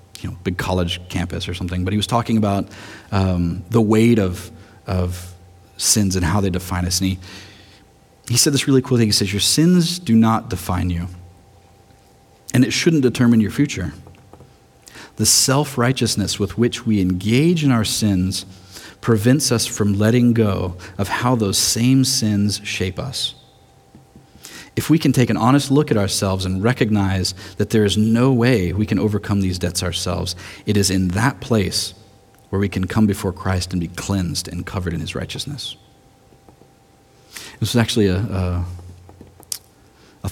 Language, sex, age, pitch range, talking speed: English, male, 40-59, 95-115 Hz, 165 wpm